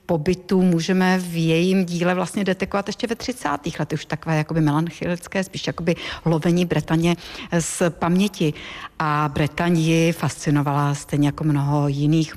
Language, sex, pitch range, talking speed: Czech, female, 150-175 Hz, 130 wpm